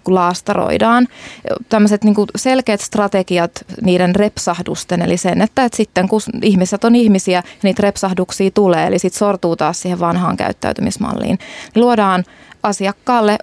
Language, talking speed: Finnish, 115 wpm